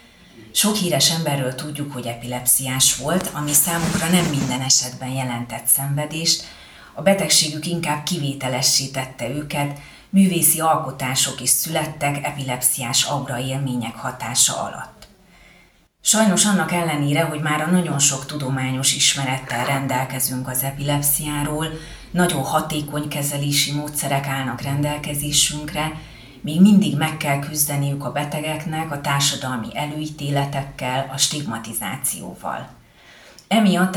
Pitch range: 135-160 Hz